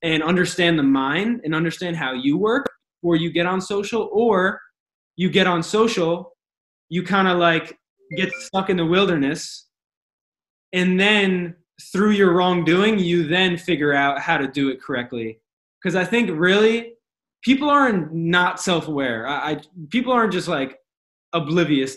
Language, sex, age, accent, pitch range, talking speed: English, male, 20-39, American, 150-195 Hz, 155 wpm